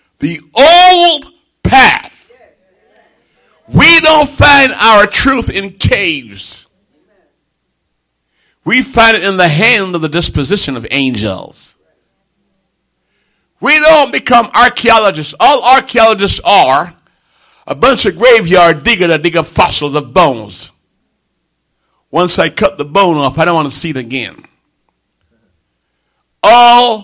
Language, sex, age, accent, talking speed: English, male, 50-69, American, 120 wpm